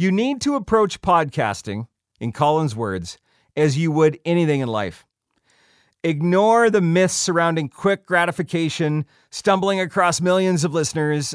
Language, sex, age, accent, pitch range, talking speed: English, male, 40-59, American, 150-200 Hz, 130 wpm